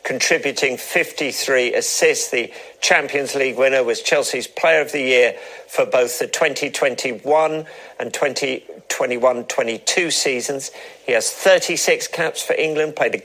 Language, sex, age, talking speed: English, male, 50-69, 125 wpm